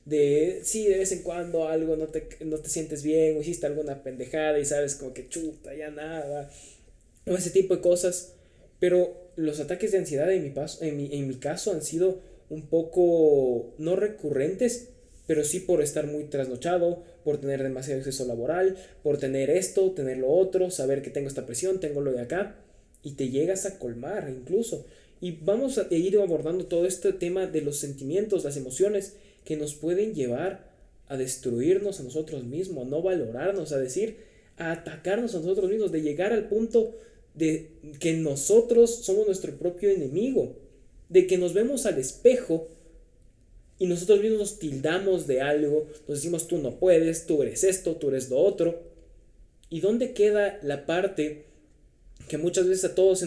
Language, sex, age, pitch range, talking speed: Spanish, male, 20-39, 145-190 Hz, 180 wpm